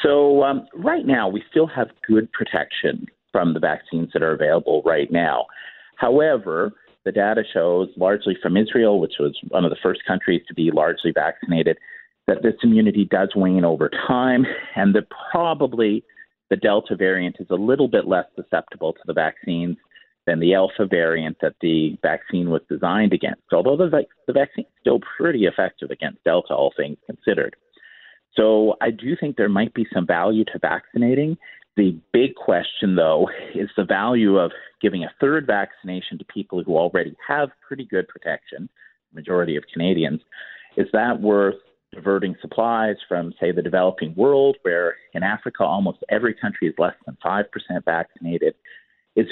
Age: 40-59